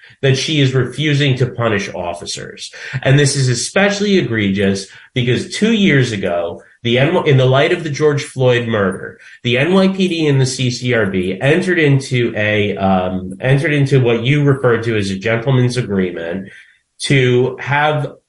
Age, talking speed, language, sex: 30-49, 150 wpm, English, male